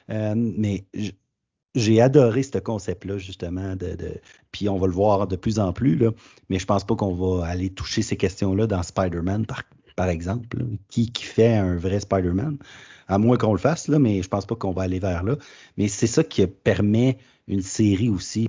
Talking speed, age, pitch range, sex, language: 205 wpm, 30-49, 95-115 Hz, male, French